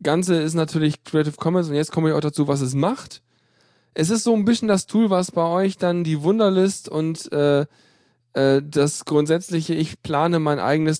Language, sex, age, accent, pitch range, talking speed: German, male, 10-29, German, 135-175 Hz, 195 wpm